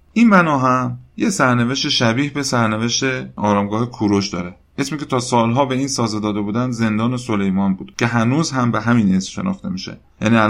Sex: male